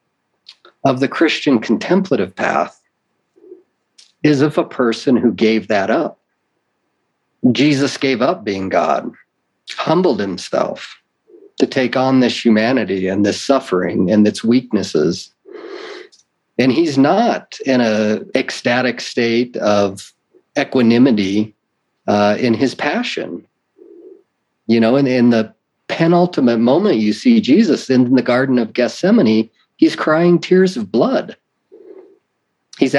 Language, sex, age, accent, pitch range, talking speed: English, male, 50-69, American, 110-160 Hz, 120 wpm